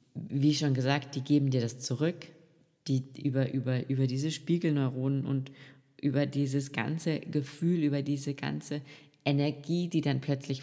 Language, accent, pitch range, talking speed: German, German, 130-150 Hz, 145 wpm